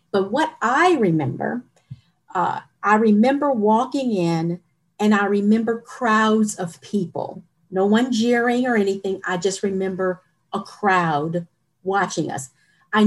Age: 50-69